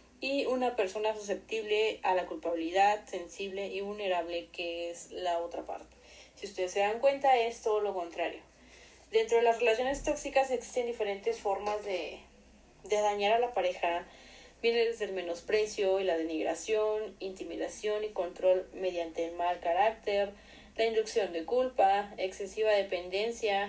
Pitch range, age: 185-235 Hz, 30-49